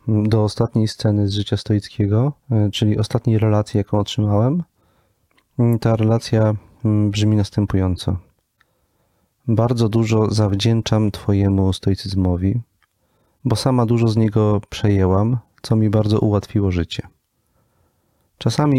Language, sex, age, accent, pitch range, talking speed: Polish, male, 40-59, native, 100-115 Hz, 100 wpm